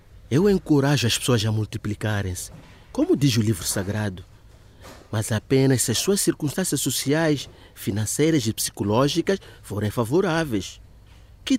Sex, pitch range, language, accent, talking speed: male, 105-155 Hz, Portuguese, Brazilian, 125 wpm